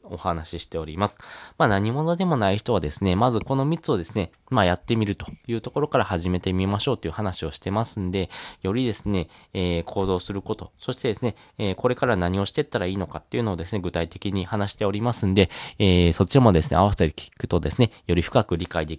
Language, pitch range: Japanese, 90-115 Hz